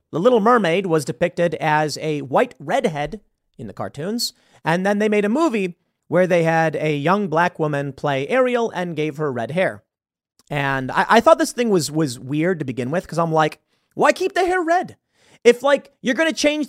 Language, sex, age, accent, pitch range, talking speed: English, male, 30-49, American, 155-225 Hz, 210 wpm